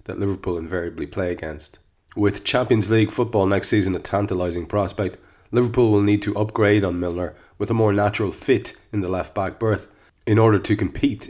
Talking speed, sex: 175 wpm, male